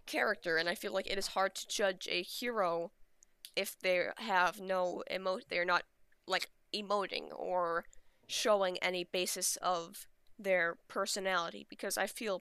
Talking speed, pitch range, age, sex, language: 150 wpm, 180-205 Hz, 10-29, female, English